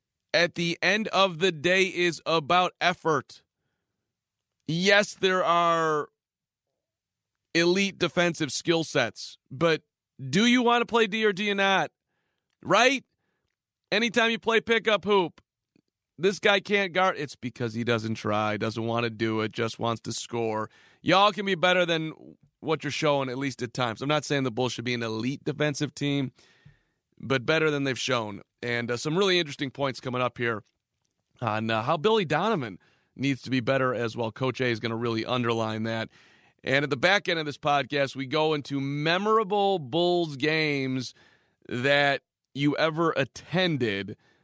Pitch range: 115-175 Hz